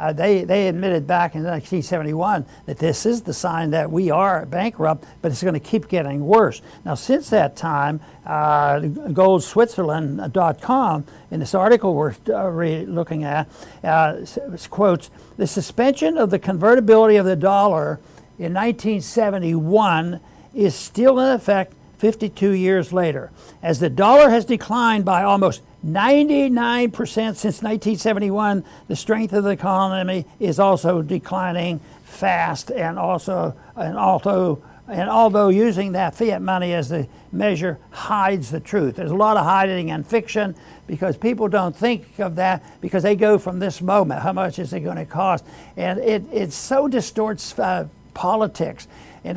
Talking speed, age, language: 150 wpm, 60-79, English